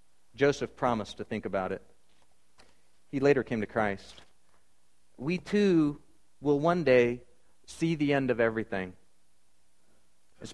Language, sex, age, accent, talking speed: English, male, 40-59, American, 125 wpm